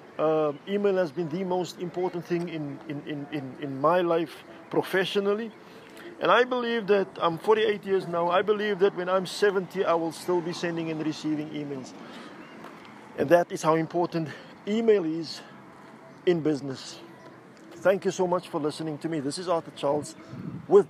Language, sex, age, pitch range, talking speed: English, male, 50-69, 150-180 Hz, 165 wpm